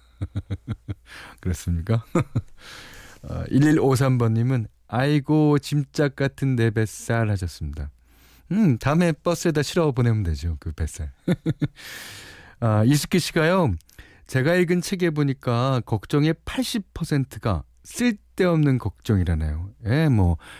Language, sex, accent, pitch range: Korean, male, native, 90-145 Hz